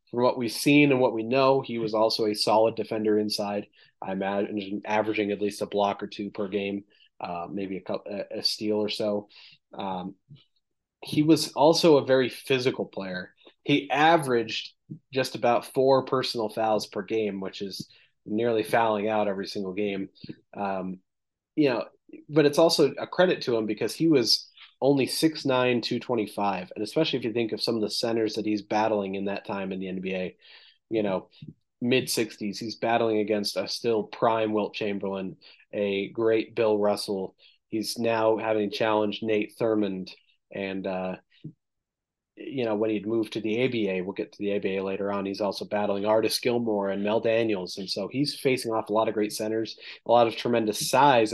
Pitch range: 100-120 Hz